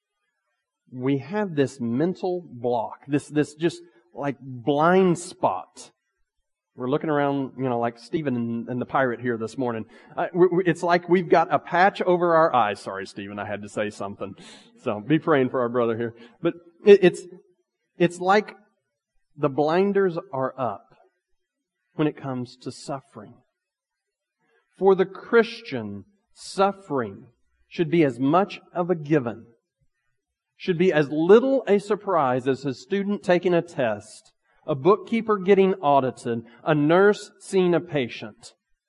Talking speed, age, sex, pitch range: 140 wpm, 40-59, male, 125-200 Hz